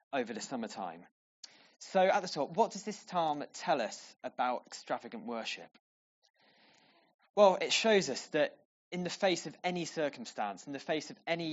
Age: 20-39